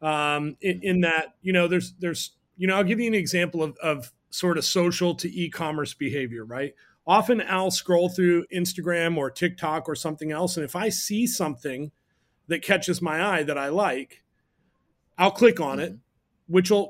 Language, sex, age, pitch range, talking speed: English, male, 30-49, 155-190 Hz, 185 wpm